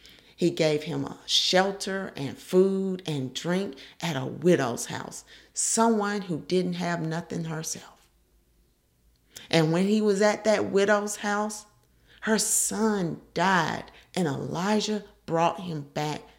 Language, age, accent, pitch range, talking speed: English, 40-59, American, 140-210 Hz, 130 wpm